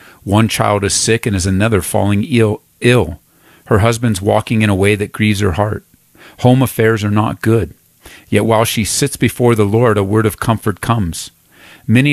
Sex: male